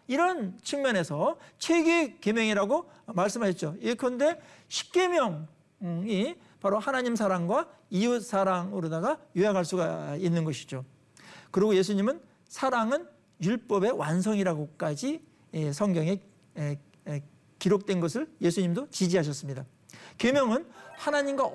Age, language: 50-69, Korean